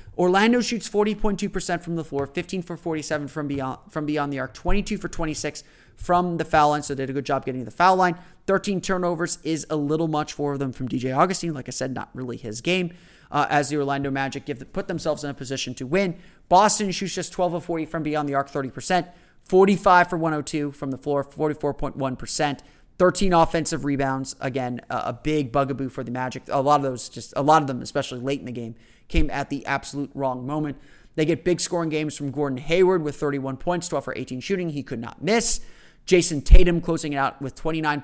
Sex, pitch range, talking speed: male, 135-175 Hz, 220 wpm